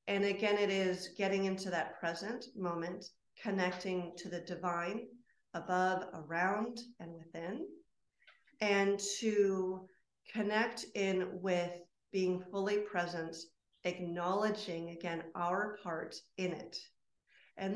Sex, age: female, 40-59